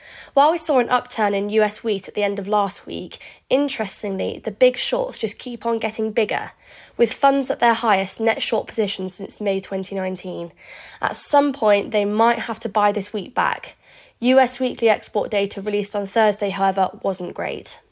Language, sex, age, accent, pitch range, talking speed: English, female, 20-39, British, 195-235 Hz, 185 wpm